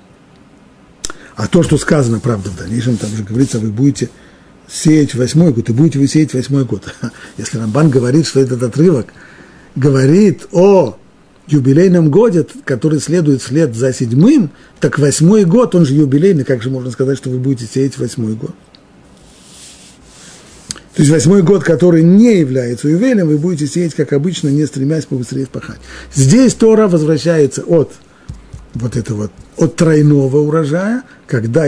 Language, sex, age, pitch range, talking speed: Russian, male, 50-69, 125-165 Hz, 150 wpm